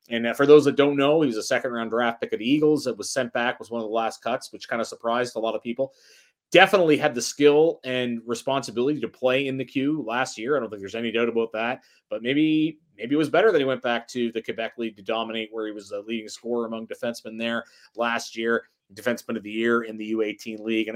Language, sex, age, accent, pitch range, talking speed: English, male, 30-49, American, 115-145 Hz, 260 wpm